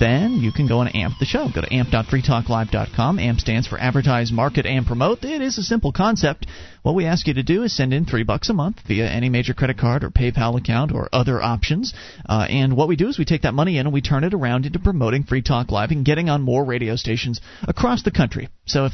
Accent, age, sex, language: American, 40-59, male, English